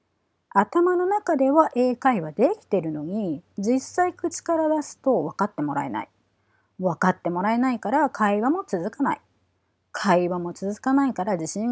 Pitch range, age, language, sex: 165-265 Hz, 30-49, Japanese, female